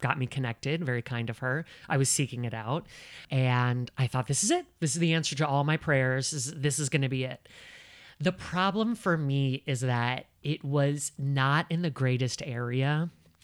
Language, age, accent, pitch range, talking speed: English, 30-49, American, 125-150 Hz, 205 wpm